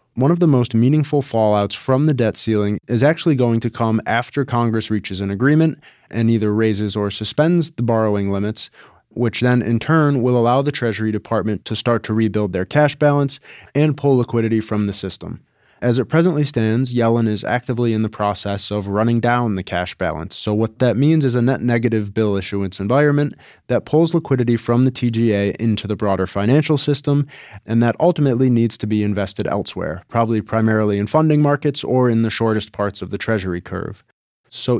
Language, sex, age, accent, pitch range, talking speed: English, male, 20-39, American, 105-130 Hz, 190 wpm